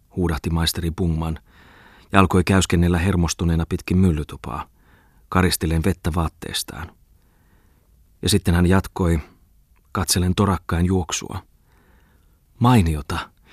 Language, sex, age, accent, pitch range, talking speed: Finnish, male, 30-49, native, 85-105 Hz, 90 wpm